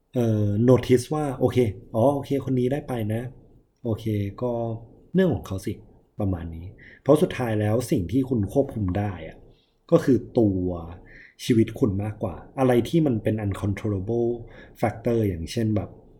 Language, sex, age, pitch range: Thai, male, 20-39, 95-120 Hz